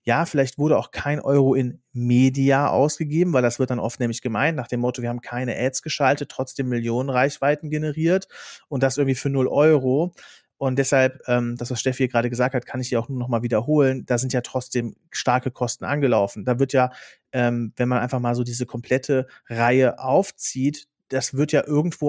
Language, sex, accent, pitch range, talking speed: German, male, German, 125-145 Hz, 200 wpm